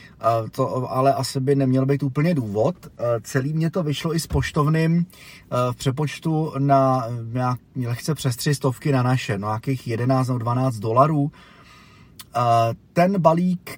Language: Czech